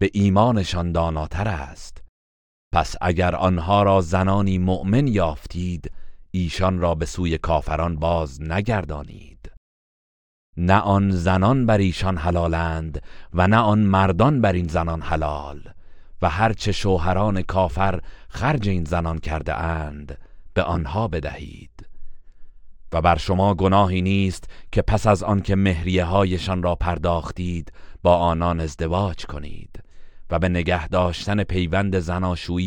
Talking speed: 125 wpm